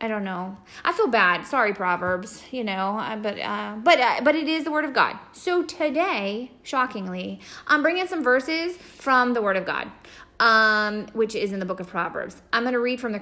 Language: English